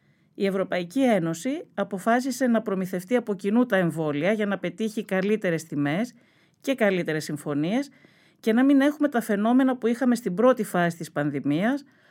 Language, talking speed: Greek, 155 wpm